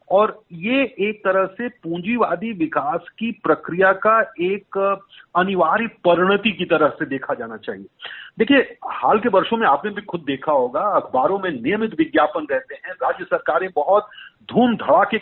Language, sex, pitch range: Hindi, male, 165-230 Hz